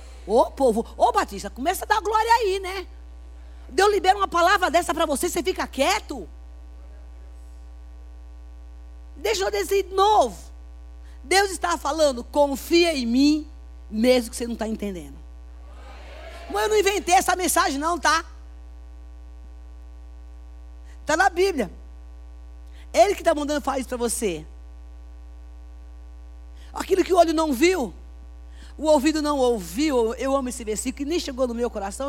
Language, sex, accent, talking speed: Portuguese, female, Brazilian, 145 wpm